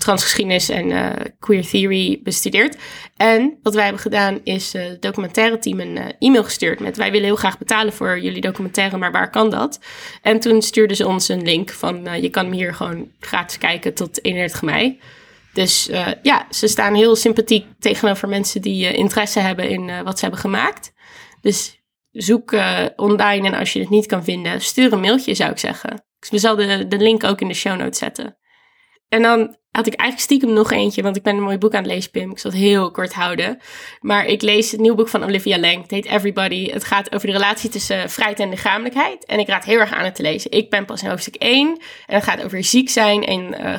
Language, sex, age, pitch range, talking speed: Dutch, female, 20-39, 195-230 Hz, 230 wpm